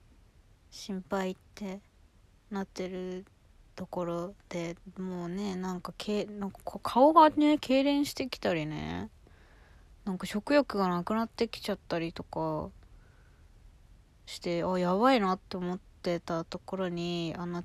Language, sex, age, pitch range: Japanese, female, 20-39, 160-205 Hz